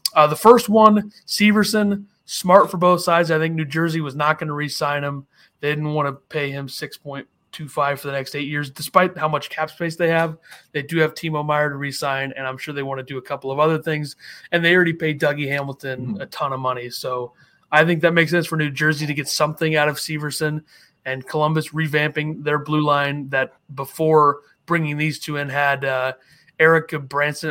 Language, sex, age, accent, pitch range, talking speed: English, male, 30-49, American, 140-165 Hz, 215 wpm